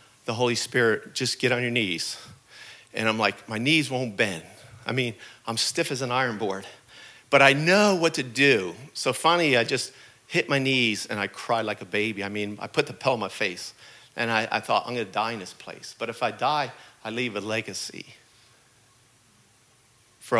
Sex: male